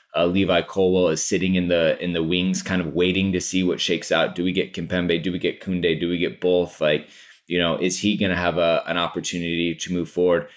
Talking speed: 250 wpm